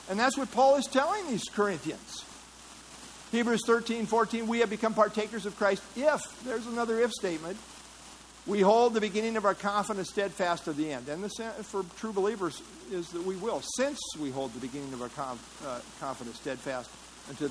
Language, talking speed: English, 180 wpm